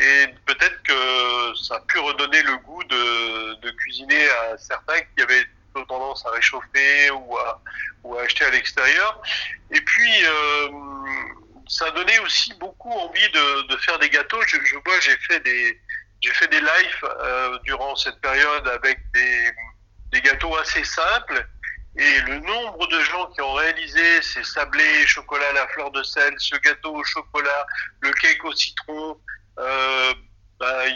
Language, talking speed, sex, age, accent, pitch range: French, 165 wpm, male, 50-69, French, 120-150 Hz